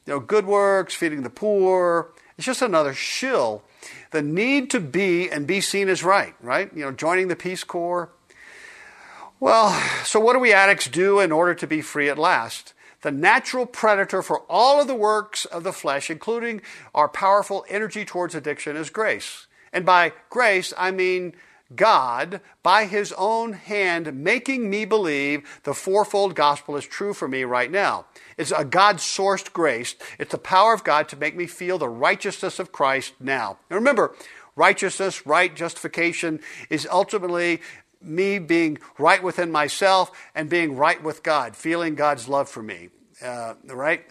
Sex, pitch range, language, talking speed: male, 155-205 Hz, English, 170 wpm